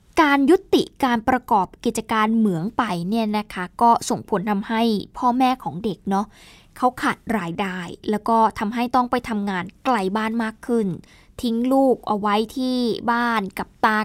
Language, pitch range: Thai, 215-270 Hz